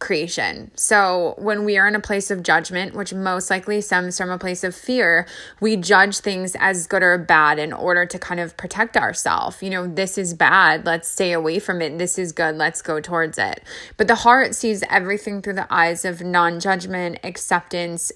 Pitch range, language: 175-205 Hz, English